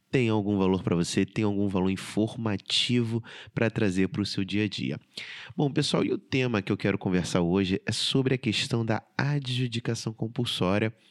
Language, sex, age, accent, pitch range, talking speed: Portuguese, male, 30-49, Brazilian, 100-130 Hz, 185 wpm